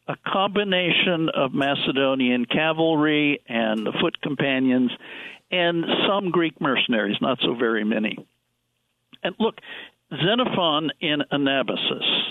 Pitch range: 125-160 Hz